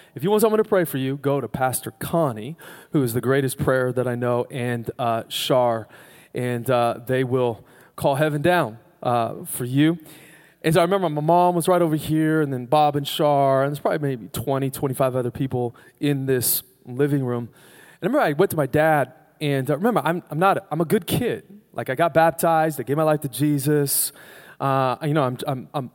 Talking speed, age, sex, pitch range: 215 wpm, 30-49, male, 130-165 Hz